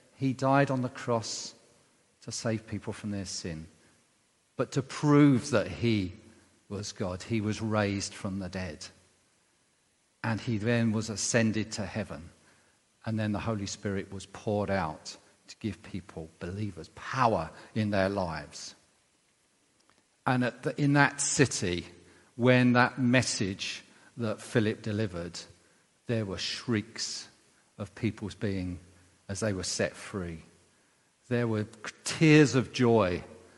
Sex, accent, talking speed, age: male, British, 135 wpm, 40-59